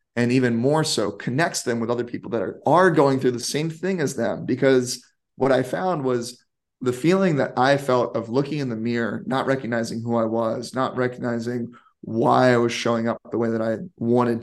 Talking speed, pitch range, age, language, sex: 210 wpm, 115-130 Hz, 30-49, English, male